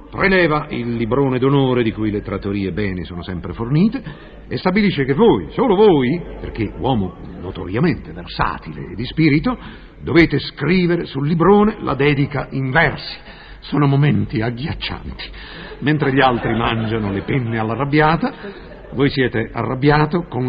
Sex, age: male, 50-69